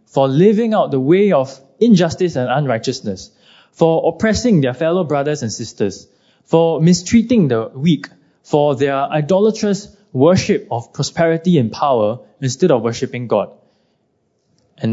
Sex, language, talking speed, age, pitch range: male, English, 135 wpm, 20-39, 115-170 Hz